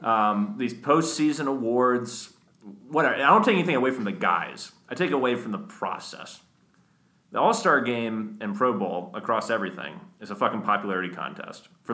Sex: male